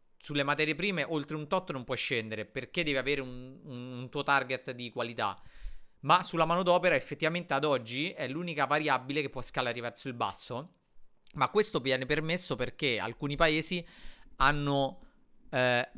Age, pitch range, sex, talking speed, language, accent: 30-49, 120-155 Hz, male, 160 wpm, Italian, native